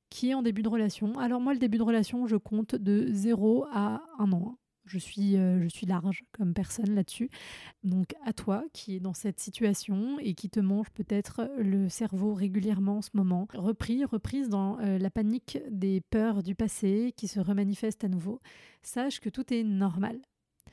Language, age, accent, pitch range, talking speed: French, 30-49, French, 200-225 Hz, 195 wpm